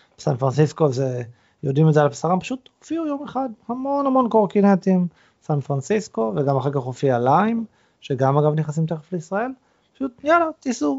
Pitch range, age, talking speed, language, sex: 125-170 Hz, 30-49, 165 wpm, Hebrew, male